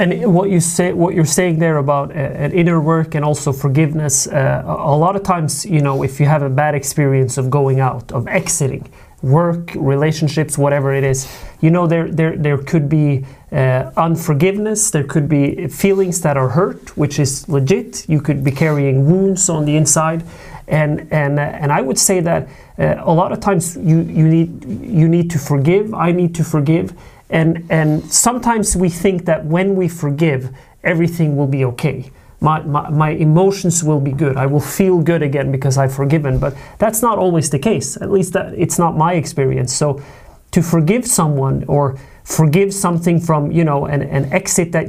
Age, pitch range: 30-49, 140-175 Hz